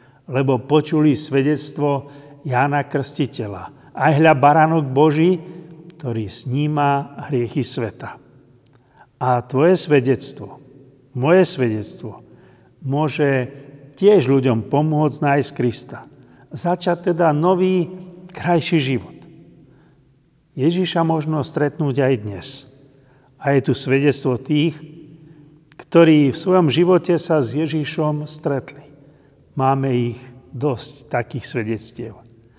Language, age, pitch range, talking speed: Slovak, 50-69, 125-155 Hz, 95 wpm